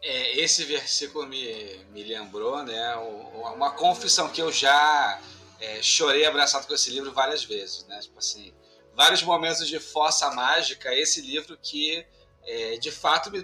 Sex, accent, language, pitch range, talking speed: male, Brazilian, Portuguese, 165-250 Hz, 155 wpm